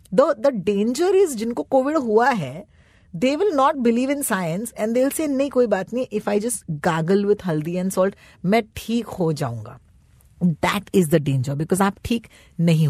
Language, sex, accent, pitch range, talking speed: Hindi, female, native, 165-245 Hz, 180 wpm